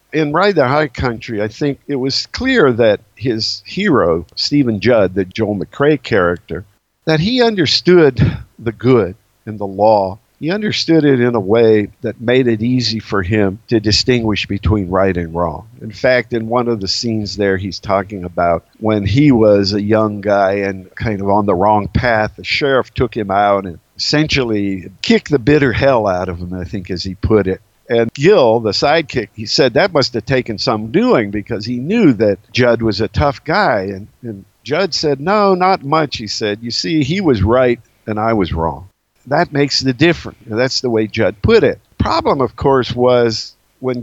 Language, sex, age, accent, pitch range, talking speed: English, male, 50-69, American, 100-135 Hz, 195 wpm